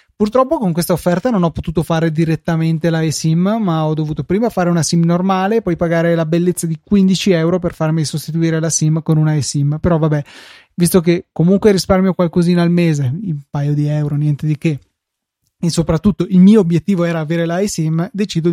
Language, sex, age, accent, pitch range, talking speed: Italian, male, 20-39, native, 155-185 Hz, 195 wpm